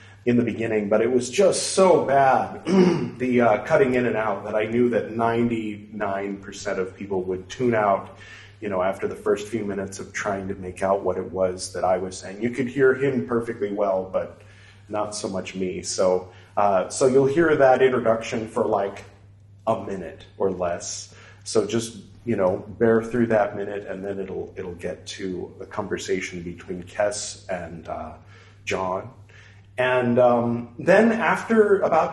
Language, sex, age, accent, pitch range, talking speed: English, male, 40-59, American, 95-120 Hz, 175 wpm